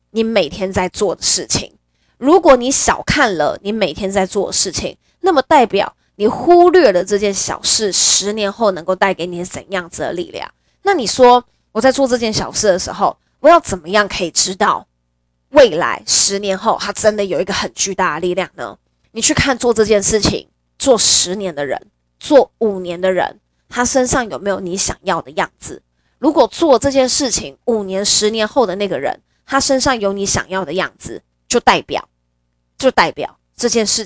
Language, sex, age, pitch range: Chinese, female, 20-39, 185-250 Hz